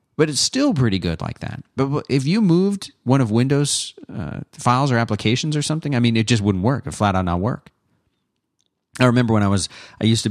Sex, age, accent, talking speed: male, 40-59, American, 220 wpm